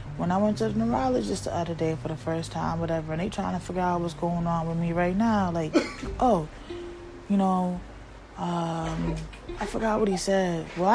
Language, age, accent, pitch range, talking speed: English, 20-39, American, 165-270 Hz, 210 wpm